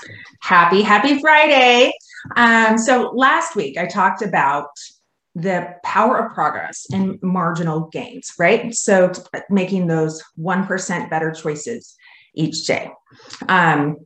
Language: English